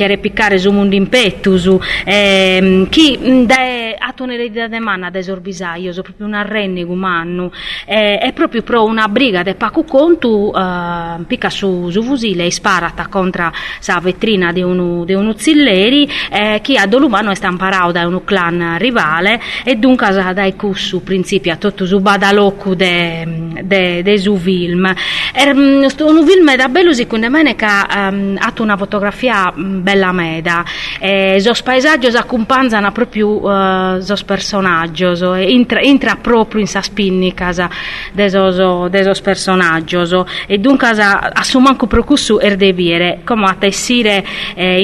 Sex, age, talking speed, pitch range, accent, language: female, 30-49, 155 wpm, 185-235 Hz, native, Italian